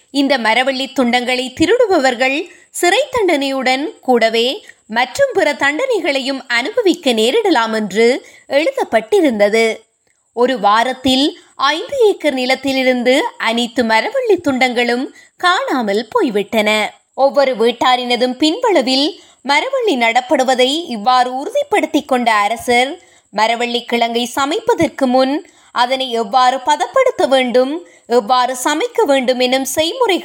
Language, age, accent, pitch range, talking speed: Tamil, 20-39, native, 245-335 Hz, 65 wpm